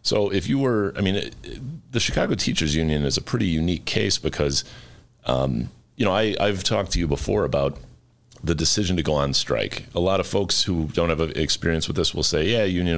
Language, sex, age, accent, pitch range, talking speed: English, male, 40-59, American, 70-95 Hz, 215 wpm